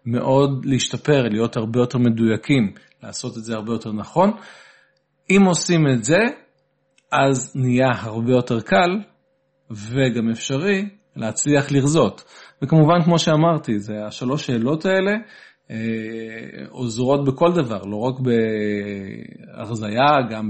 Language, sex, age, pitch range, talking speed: Hebrew, male, 40-59, 115-145 Hz, 115 wpm